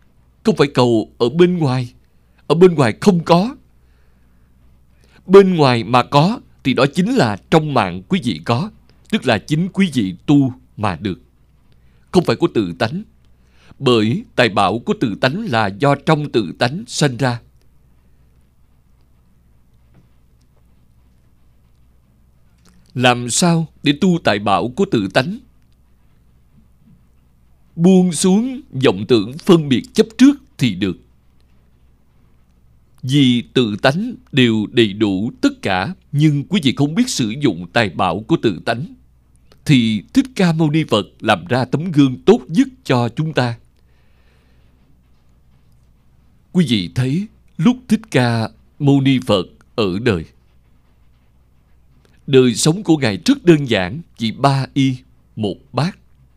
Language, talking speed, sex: Vietnamese, 135 wpm, male